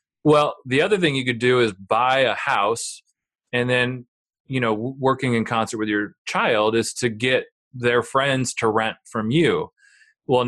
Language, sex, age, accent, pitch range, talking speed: English, male, 30-49, American, 110-135 Hz, 180 wpm